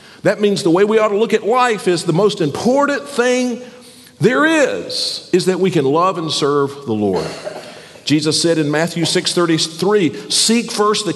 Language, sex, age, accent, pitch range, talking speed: English, male, 50-69, American, 160-230 Hz, 195 wpm